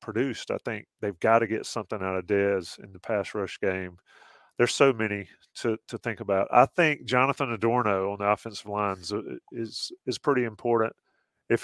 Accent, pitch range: American, 105-120 Hz